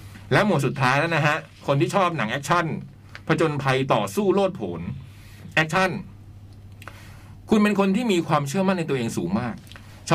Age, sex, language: 60-79, male, Thai